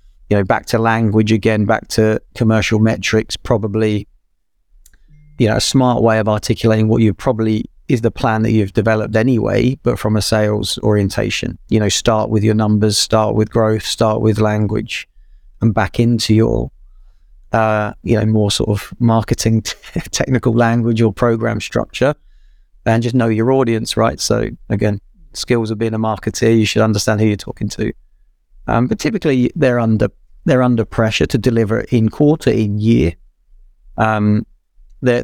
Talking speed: 165 wpm